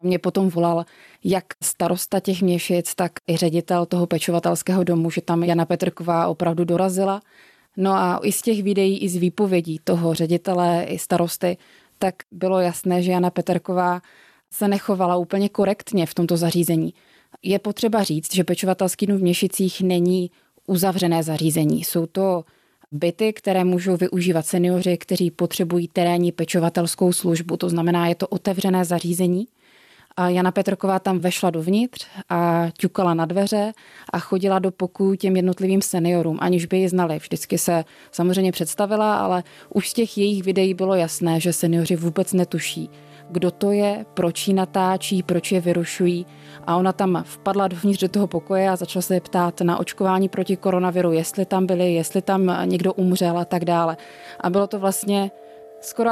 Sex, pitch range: female, 175-195 Hz